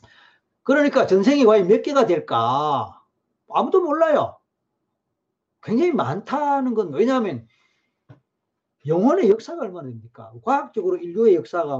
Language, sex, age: Korean, male, 40-59